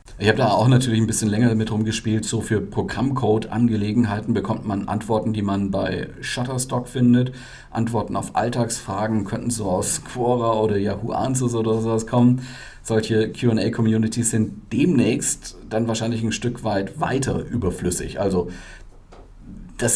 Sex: male